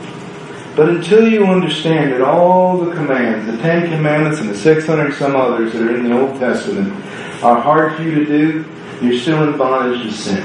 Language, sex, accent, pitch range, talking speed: English, male, American, 120-155 Hz, 190 wpm